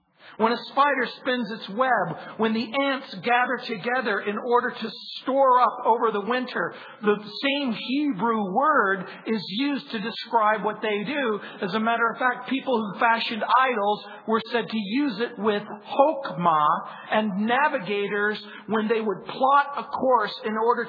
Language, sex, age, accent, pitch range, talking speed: English, male, 50-69, American, 195-245 Hz, 160 wpm